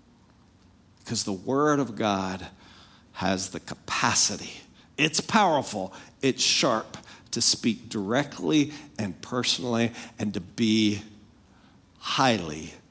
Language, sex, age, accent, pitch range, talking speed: English, male, 50-69, American, 115-150 Hz, 100 wpm